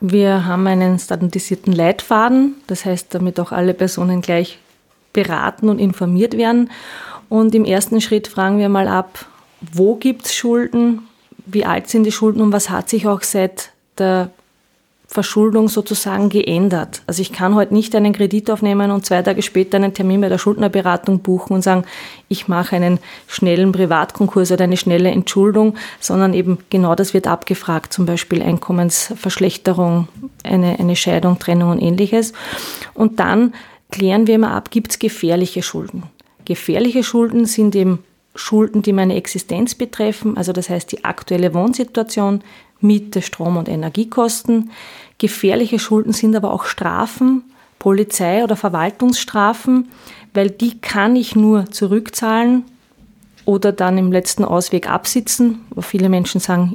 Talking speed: 150 wpm